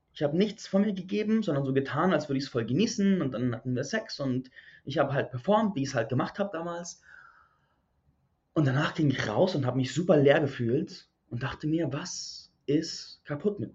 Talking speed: 220 wpm